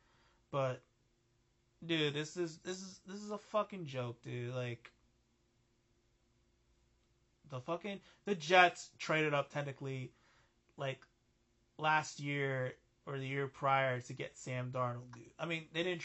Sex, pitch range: male, 125-160 Hz